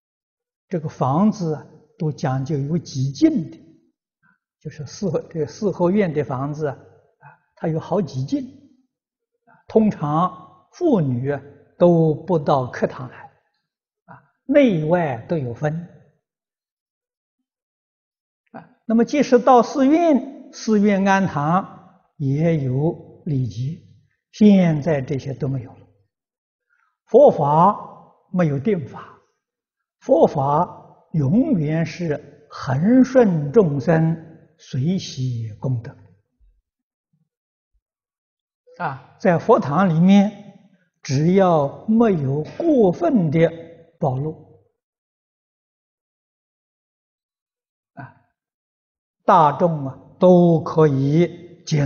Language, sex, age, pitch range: Chinese, male, 60-79, 145-205 Hz